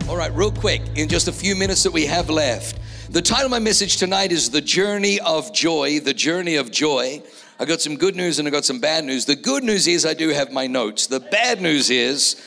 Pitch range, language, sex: 125-170 Hz, English, male